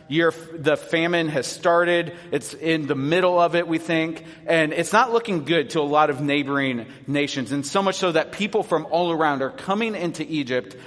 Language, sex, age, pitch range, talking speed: English, male, 30-49, 150-180 Hz, 200 wpm